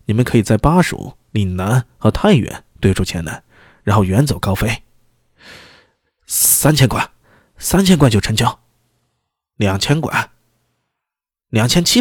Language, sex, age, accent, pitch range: Chinese, male, 20-39, native, 100-145 Hz